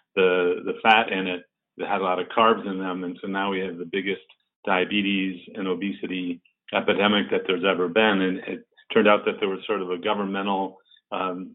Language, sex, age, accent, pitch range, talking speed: English, male, 40-59, American, 95-115 Hz, 210 wpm